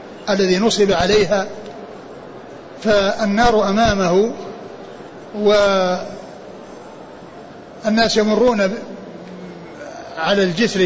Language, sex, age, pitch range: Arabic, male, 60-79, 190-215 Hz